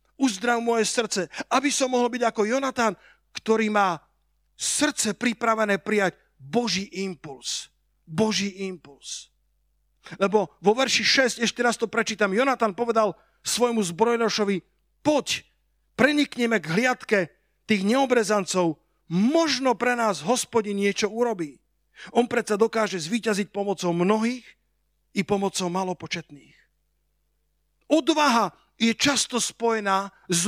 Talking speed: 110 wpm